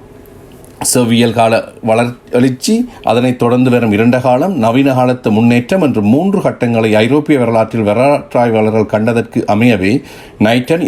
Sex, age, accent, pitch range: male, 50-69, native, 110-140 Hz